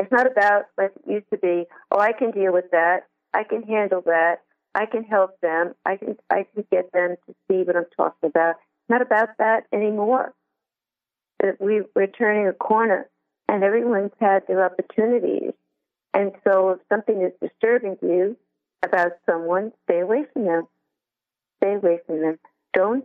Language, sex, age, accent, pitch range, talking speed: English, female, 50-69, American, 180-215 Hz, 170 wpm